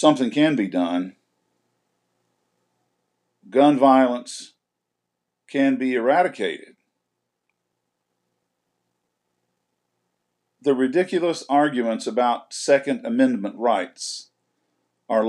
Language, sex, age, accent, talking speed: English, male, 50-69, American, 65 wpm